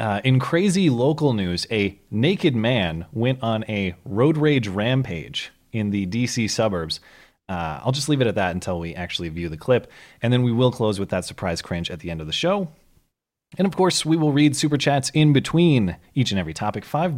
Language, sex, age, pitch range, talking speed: English, male, 30-49, 95-140 Hz, 215 wpm